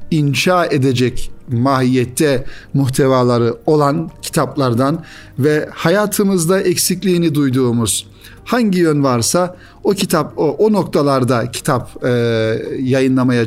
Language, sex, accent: Turkish, male, native